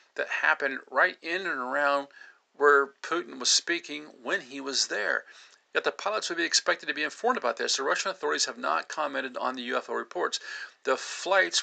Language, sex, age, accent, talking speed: English, male, 50-69, American, 190 wpm